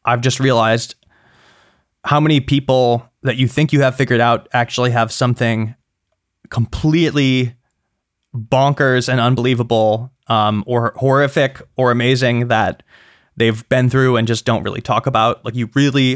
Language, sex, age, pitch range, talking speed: English, male, 20-39, 115-135 Hz, 140 wpm